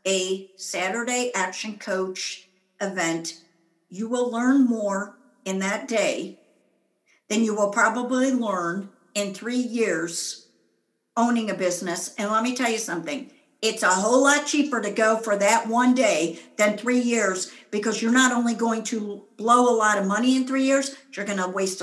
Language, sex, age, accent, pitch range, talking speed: English, female, 50-69, American, 195-245 Hz, 170 wpm